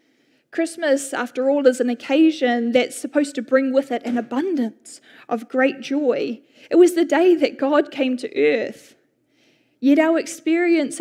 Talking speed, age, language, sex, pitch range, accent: 160 wpm, 10-29, English, female, 250-300 Hz, Australian